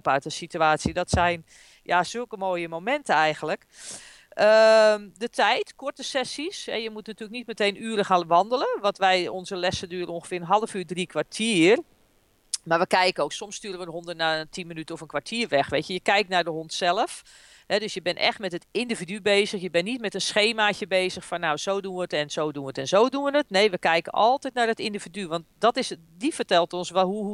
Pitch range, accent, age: 175-240 Hz, Dutch, 40-59